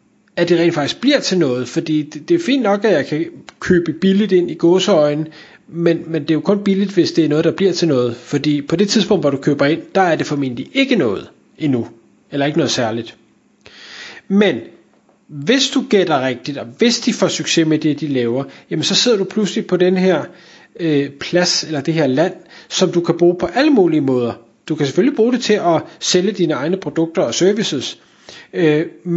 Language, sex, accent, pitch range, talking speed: Danish, male, native, 155-200 Hz, 210 wpm